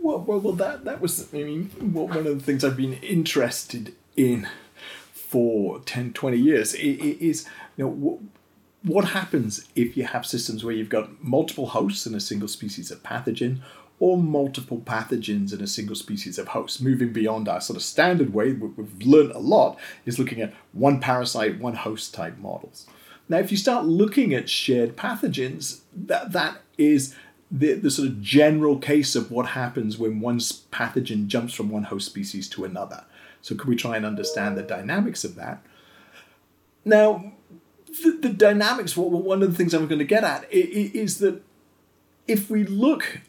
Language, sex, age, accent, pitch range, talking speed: English, male, 40-59, British, 115-190 Hz, 175 wpm